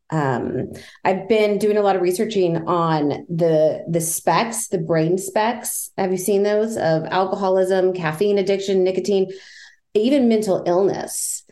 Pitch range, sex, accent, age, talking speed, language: 160-205 Hz, female, American, 30-49, 140 wpm, English